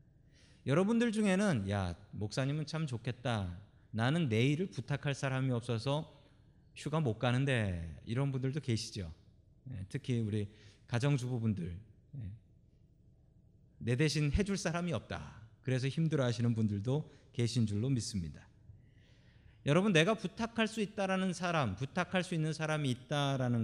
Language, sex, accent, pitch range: Korean, male, native, 110-180 Hz